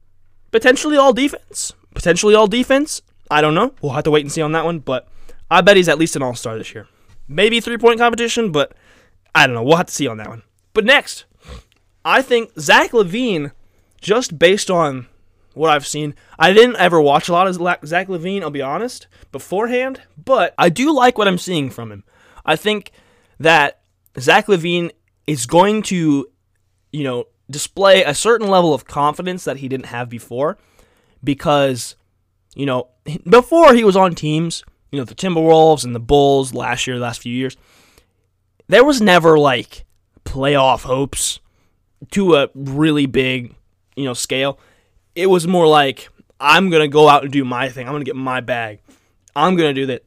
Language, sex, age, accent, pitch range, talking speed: English, male, 20-39, American, 125-190 Hz, 185 wpm